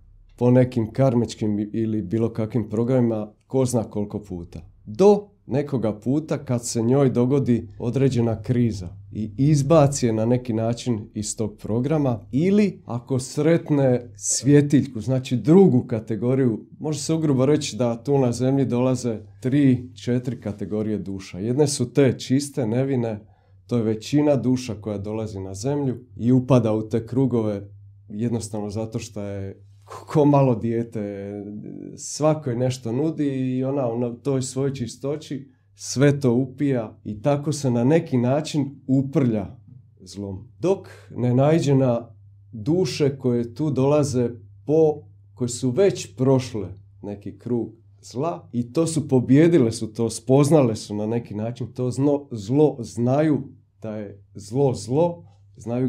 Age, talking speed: 40-59, 140 wpm